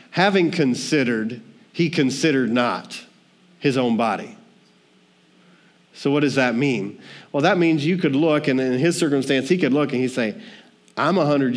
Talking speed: 160 wpm